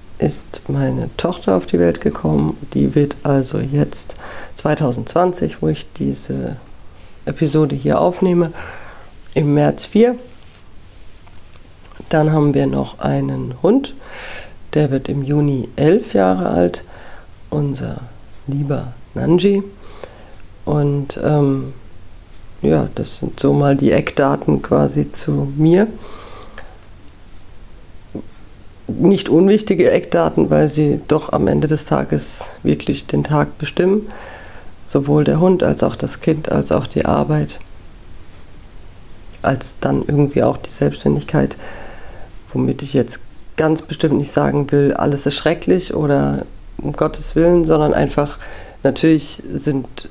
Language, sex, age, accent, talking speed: German, female, 50-69, German, 120 wpm